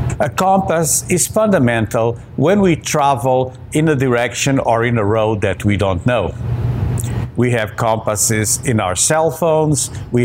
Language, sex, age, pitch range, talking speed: English, male, 50-69, 115-150 Hz, 150 wpm